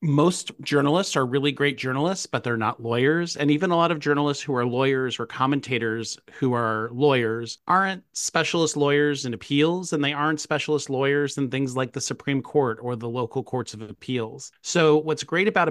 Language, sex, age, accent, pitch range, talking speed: English, male, 30-49, American, 120-150 Hz, 190 wpm